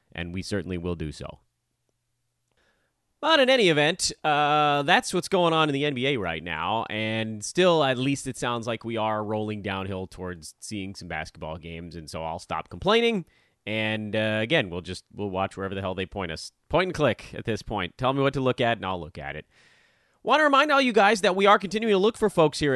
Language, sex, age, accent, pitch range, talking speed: English, male, 30-49, American, 100-155 Hz, 225 wpm